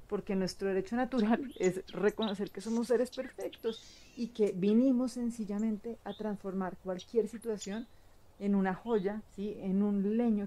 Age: 30-49